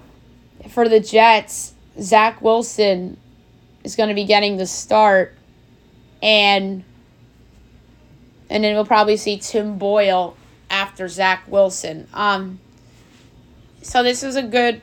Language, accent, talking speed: English, American, 115 wpm